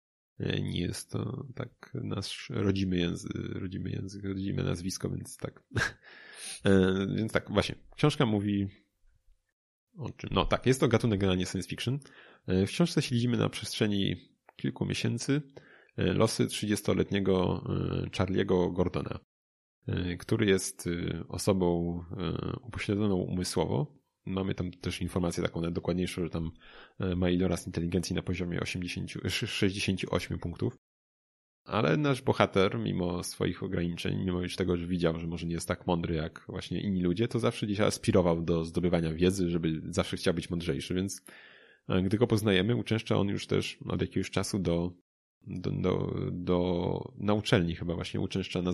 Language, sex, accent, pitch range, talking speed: Polish, male, native, 90-105 Hz, 135 wpm